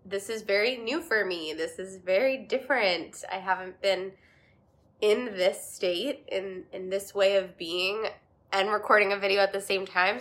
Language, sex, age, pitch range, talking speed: English, female, 20-39, 190-220 Hz, 175 wpm